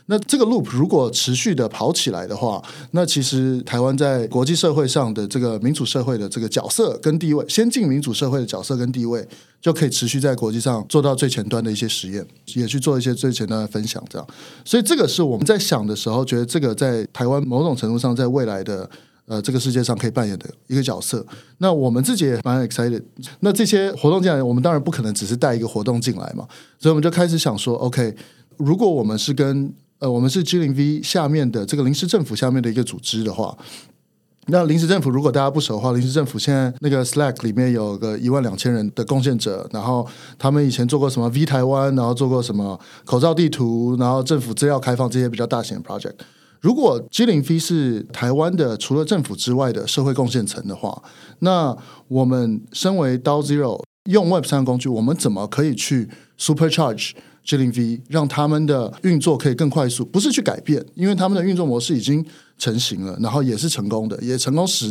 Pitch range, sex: 120-155 Hz, male